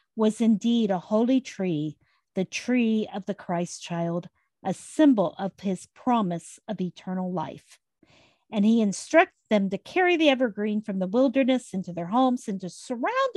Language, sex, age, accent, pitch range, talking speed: English, female, 50-69, American, 190-265 Hz, 160 wpm